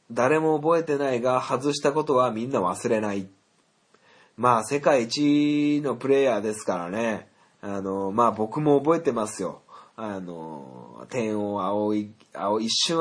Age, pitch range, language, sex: 20-39, 110-165 Hz, Japanese, male